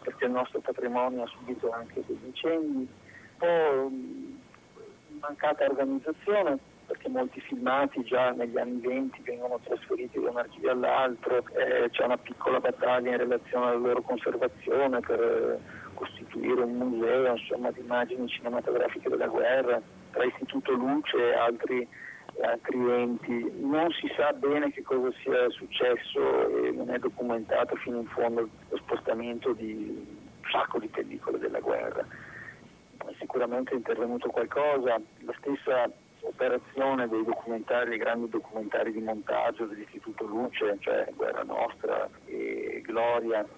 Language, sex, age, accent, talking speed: Italian, male, 50-69, native, 130 wpm